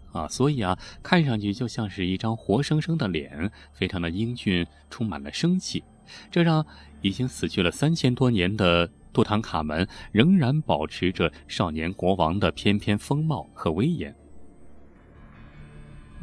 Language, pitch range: Chinese, 85-125 Hz